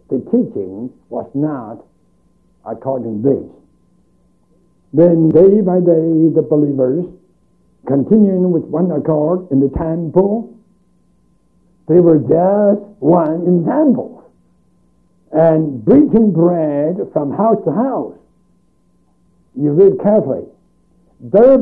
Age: 60-79